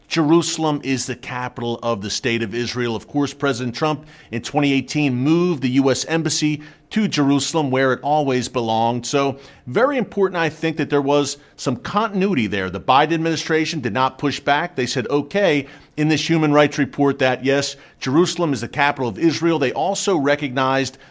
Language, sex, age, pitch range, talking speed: English, male, 40-59, 125-150 Hz, 175 wpm